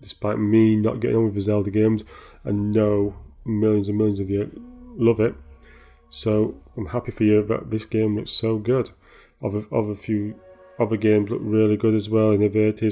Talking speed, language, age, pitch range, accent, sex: 190 wpm, English, 30-49, 105-115 Hz, British, male